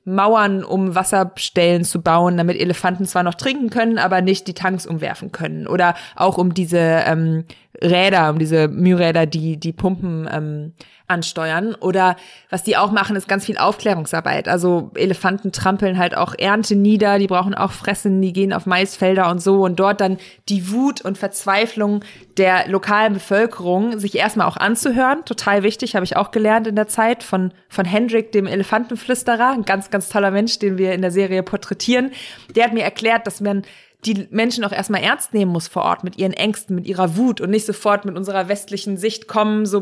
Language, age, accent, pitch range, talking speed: German, 20-39, German, 185-215 Hz, 190 wpm